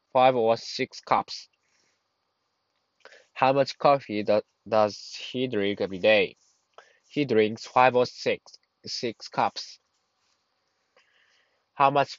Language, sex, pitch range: Japanese, male, 110-135 Hz